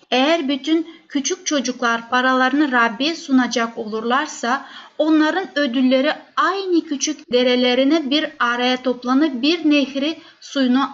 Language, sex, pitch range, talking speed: Turkish, female, 240-280 Hz, 105 wpm